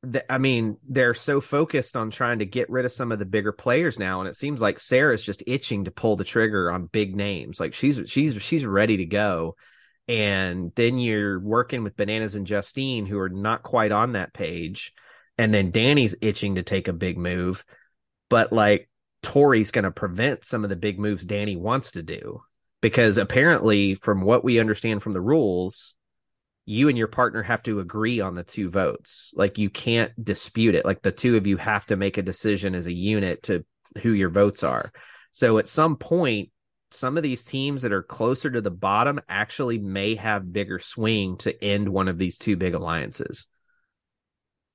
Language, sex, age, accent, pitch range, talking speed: English, male, 30-49, American, 100-120 Hz, 195 wpm